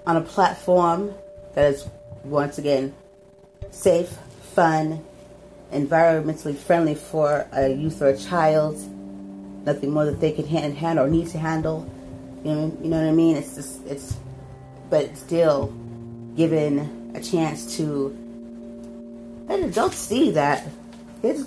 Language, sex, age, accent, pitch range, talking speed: English, female, 30-49, American, 130-180 Hz, 140 wpm